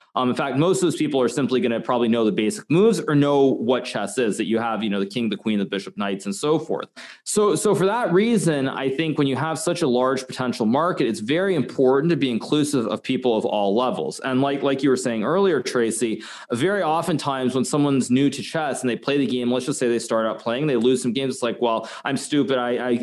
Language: English